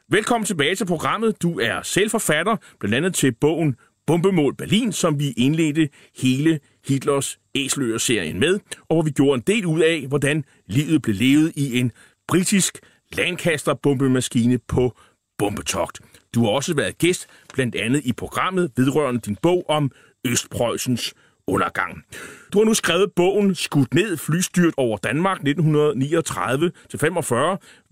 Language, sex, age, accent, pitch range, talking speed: Danish, male, 30-49, native, 130-175 Hz, 135 wpm